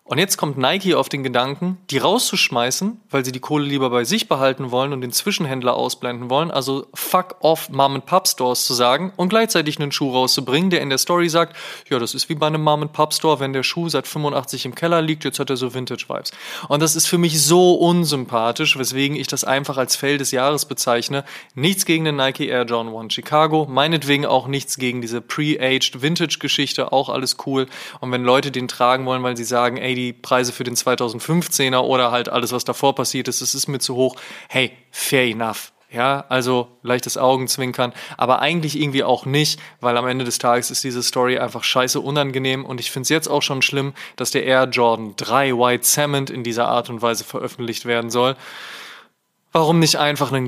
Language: German